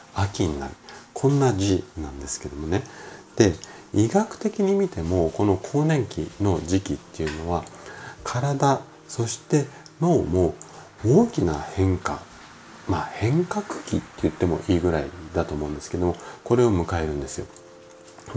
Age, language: 40-59, Japanese